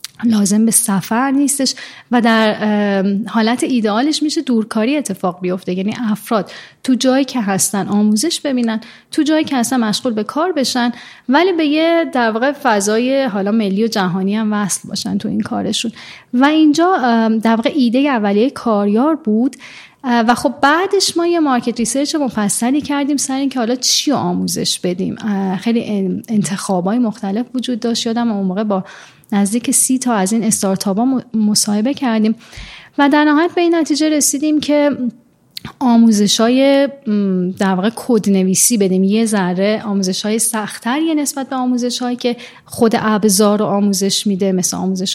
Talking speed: 150 wpm